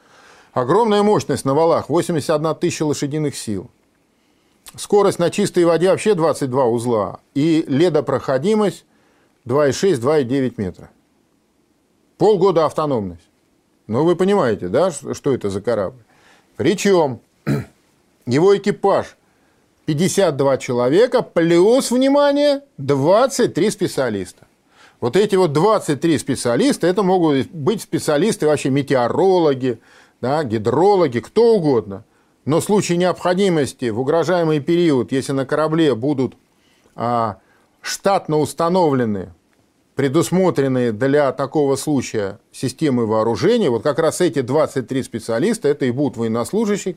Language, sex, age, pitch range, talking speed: Russian, male, 50-69, 130-180 Hz, 105 wpm